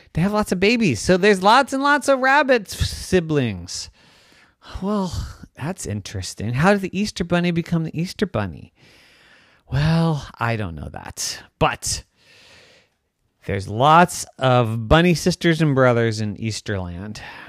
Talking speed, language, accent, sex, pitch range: 135 wpm, English, American, male, 115-185 Hz